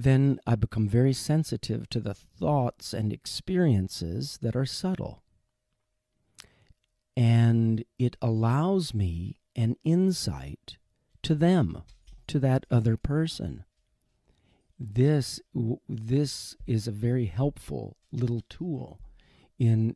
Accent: American